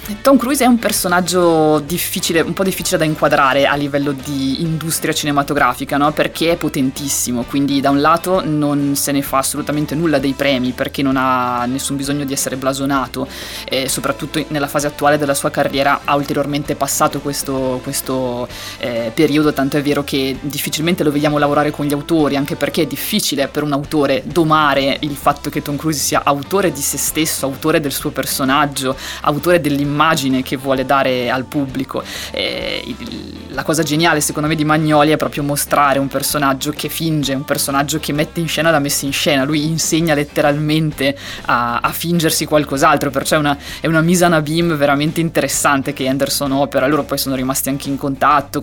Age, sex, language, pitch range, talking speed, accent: 20-39, female, Italian, 140-155 Hz, 180 wpm, native